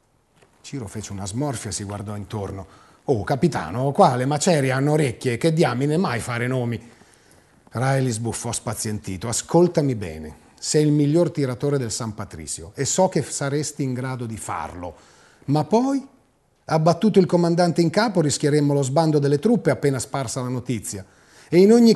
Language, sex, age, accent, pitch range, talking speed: Italian, male, 40-59, native, 115-155 Hz, 165 wpm